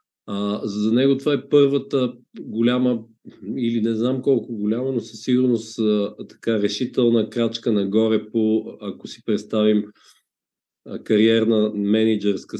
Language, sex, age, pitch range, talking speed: Bulgarian, male, 50-69, 100-120 Hz, 130 wpm